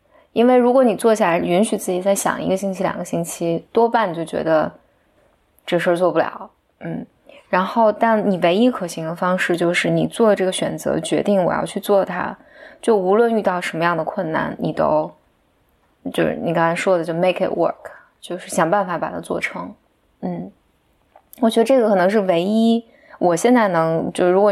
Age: 20-39